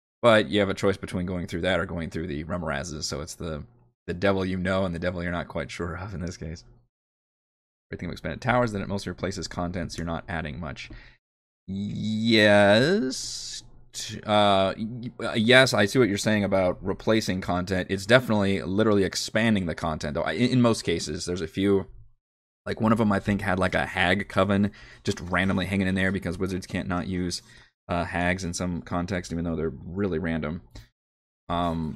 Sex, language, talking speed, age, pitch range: male, English, 190 wpm, 20-39, 85-105 Hz